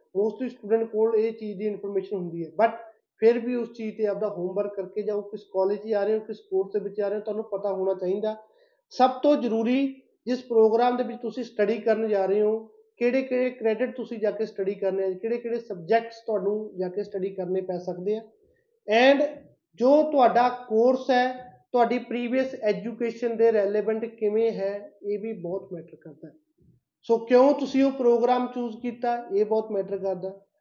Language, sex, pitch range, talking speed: Punjabi, male, 205-240 Hz, 160 wpm